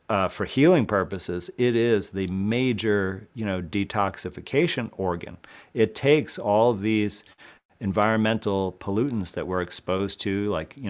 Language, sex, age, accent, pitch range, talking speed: English, male, 40-59, American, 95-105 Hz, 140 wpm